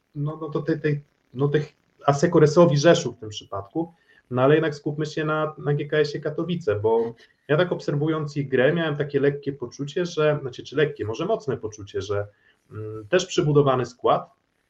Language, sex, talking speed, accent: Polish, male, 175 wpm, native